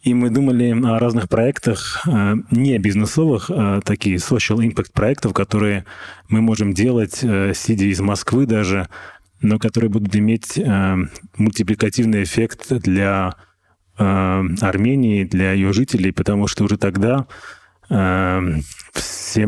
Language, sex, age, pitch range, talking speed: Russian, male, 20-39, 95-110 Hz, 115 wpm